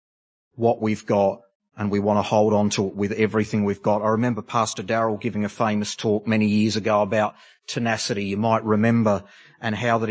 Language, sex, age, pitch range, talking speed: English, male, 40-59, 105-130 Hz, 200 wpm